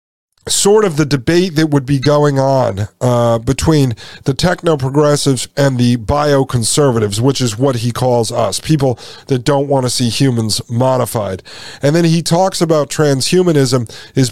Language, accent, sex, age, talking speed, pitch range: English, American, male, 40-59, 155 wpm, 125-150 Hz